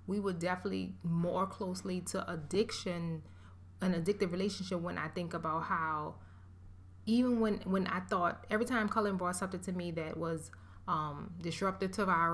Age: 20-39